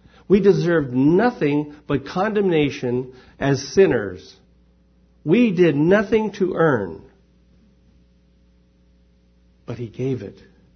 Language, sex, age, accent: English, male, 50-69, American